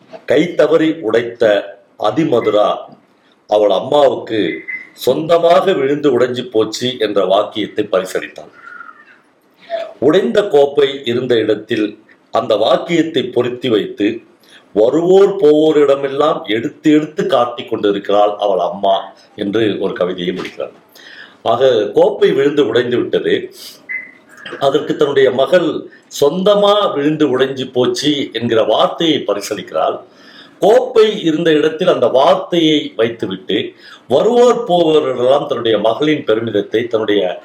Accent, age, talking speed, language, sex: native, 50-69, 95 wpm, Tamil, male